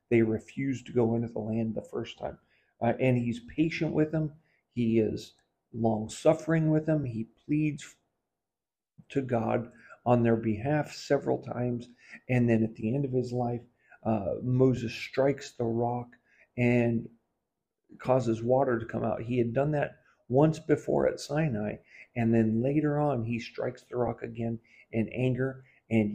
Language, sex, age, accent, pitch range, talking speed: English, male, 50-69, American, 115-130 Hz, 160 wpm